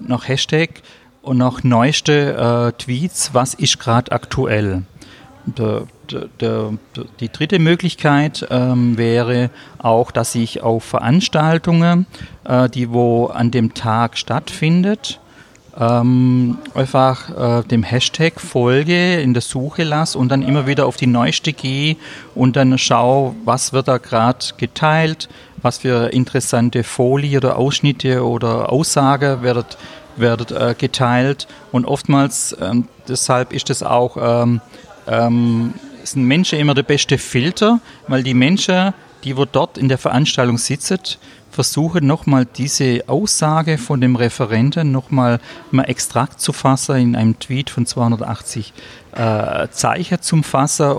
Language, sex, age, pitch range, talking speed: English, male, 40-59, 120-145 Hz, 135 wpm